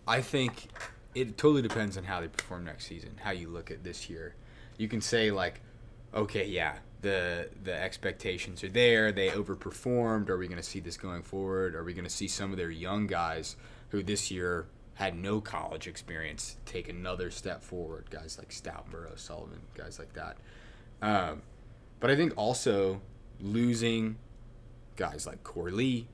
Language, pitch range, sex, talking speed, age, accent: English, 90-115 Hz, male, 175 wpm, 20-39, American